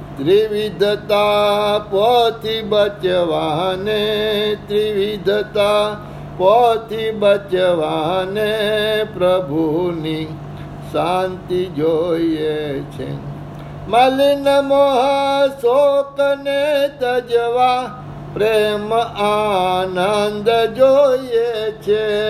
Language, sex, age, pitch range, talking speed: Gujarati, male, 60-79, 190-230 Hz, 45 wpm